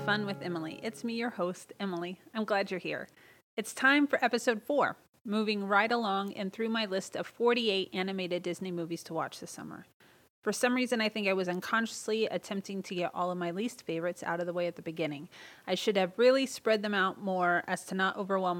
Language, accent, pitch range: English, American, 185-235 Hz